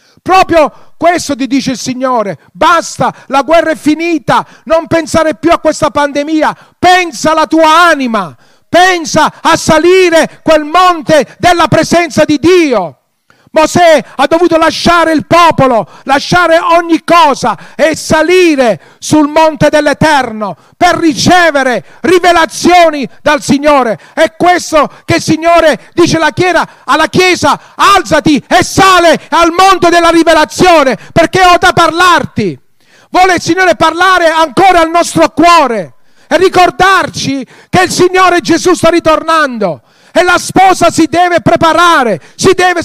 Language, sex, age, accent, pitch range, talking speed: Italian, male, 40-59, native, 290-335 Hz, 130 wpm